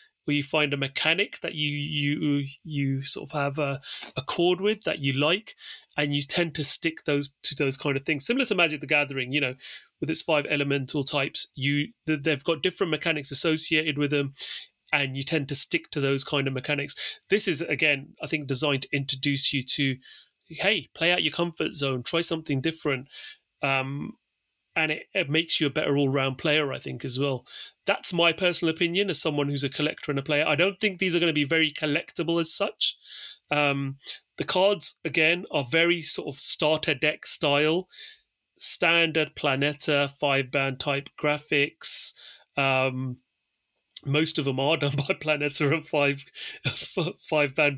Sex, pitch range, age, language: male, 140-165 Hz, 30-49, English